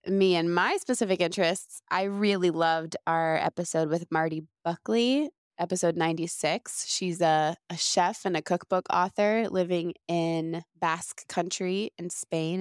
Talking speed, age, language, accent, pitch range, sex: 145 wpm, 20-39, English, American, 165-190 Hz, female